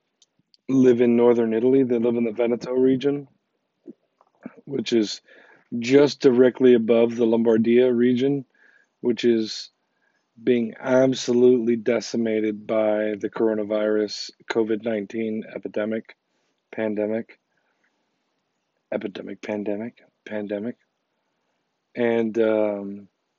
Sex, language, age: male, English, 40-59